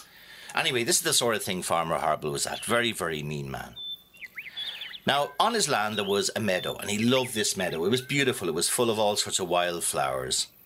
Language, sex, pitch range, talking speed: English, male, 100-130 Hz, 220 wpm